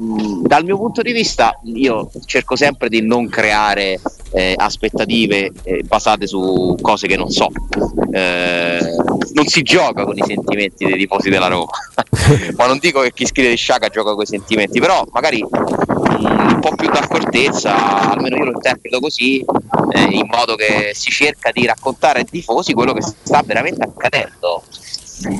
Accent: native